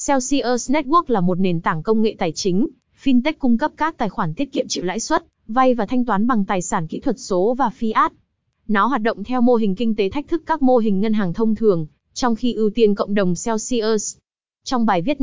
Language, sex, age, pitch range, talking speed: Vietnamese, female, 20-39, 195-255 Hz, 235 wpm